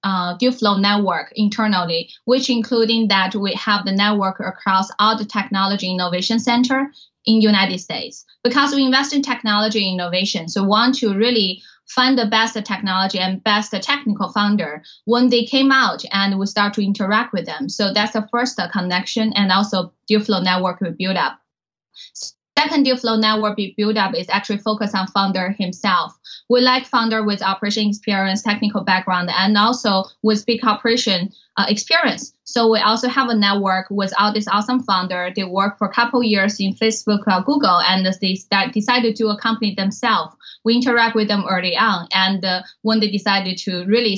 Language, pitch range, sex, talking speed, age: English, 190-230 Hz, female, 180 wpm, 10-29